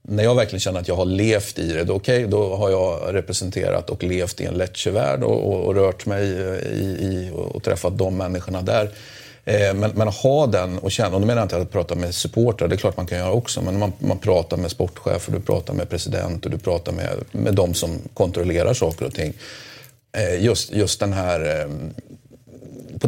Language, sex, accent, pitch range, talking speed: Swedish, male, native, 95-125 Hz, 225 wpm